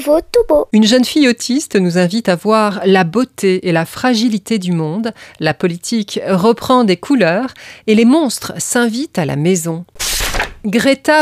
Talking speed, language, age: 150 wpm, French, 40-59